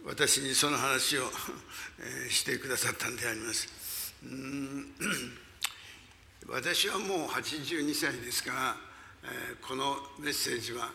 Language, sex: Japanese, male